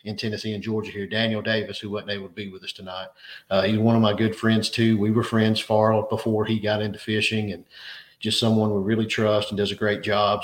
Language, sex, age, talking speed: English, male, 40-59, 240 wpm